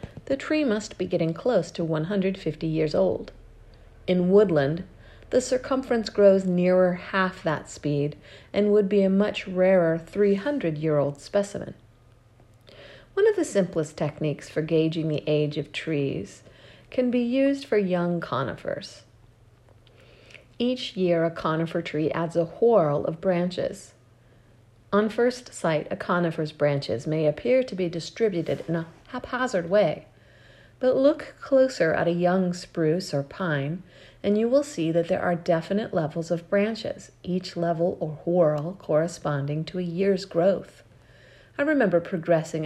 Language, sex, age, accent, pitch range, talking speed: English, female, 50-69, American, 155-205 Hz, 140 wpm